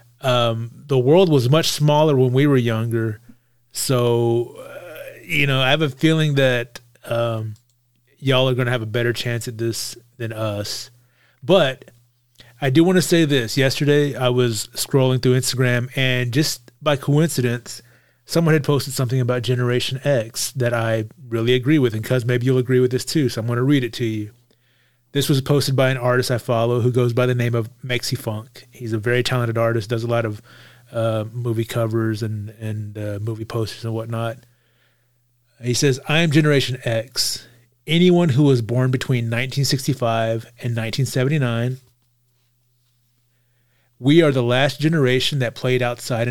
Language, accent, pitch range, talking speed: English, American, 120-135 Hz, 175 wpm